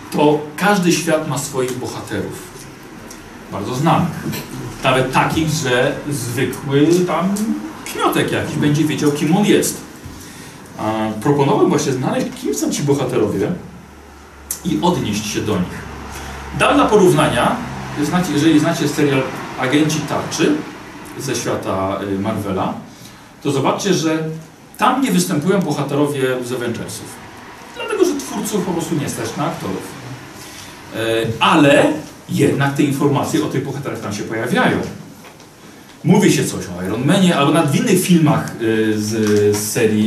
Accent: native